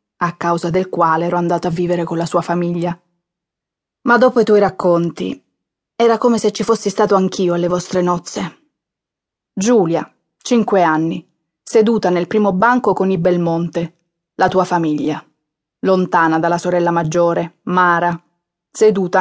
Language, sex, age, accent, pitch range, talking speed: Italian, female, 20-39, native, 170-205 Hz, 145 wpm